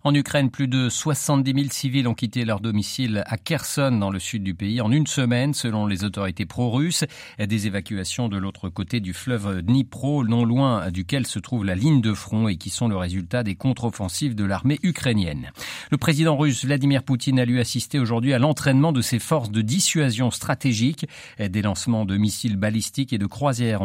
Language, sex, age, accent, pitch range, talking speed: French, male, 50-69, French, 100-135 Hz, 195 wpm